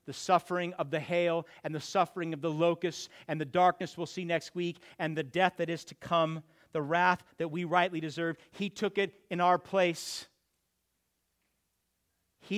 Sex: male